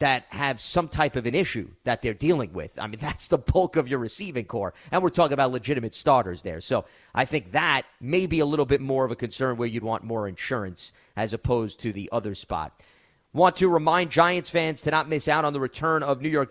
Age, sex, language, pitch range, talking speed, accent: 30-49, male, English, 115-145 Hz, 240 wpm, American